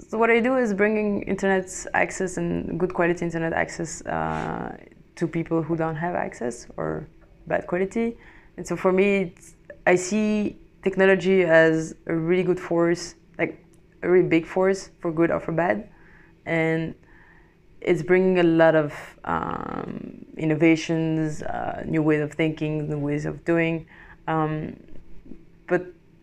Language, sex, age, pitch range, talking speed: English, female, 20-39, 155-180 Hz, 145 wpm